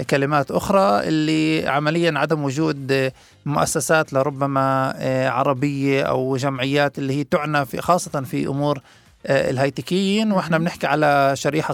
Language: Arabic